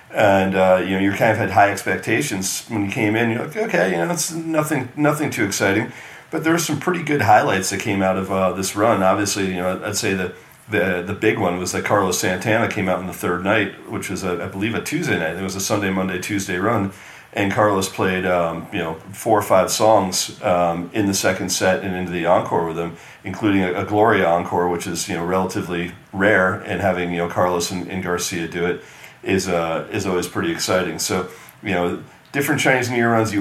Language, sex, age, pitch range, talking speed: English, male, 40-59, 90-110 Hz, 235 wpm